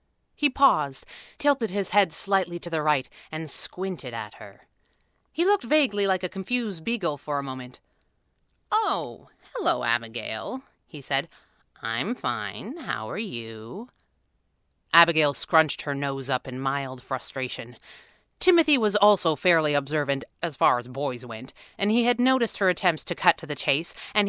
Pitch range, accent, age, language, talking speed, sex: 145-225 Hz, American, 30-49, English, 155 wpm, female